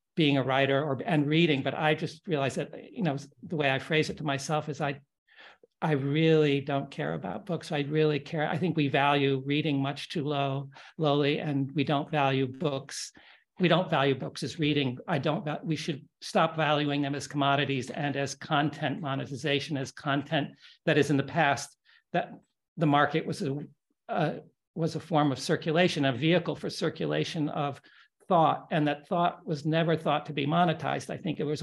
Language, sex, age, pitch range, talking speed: English, male, 60-79, 140-160 Hz, 190 wpm